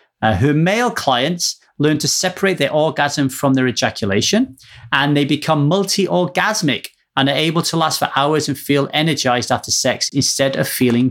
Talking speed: 165 wpm